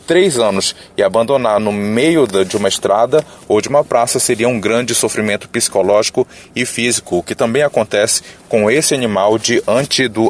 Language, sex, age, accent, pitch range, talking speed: Portuguese, male, 30-49, Brazilian, 110-145 Hz, 170 wpm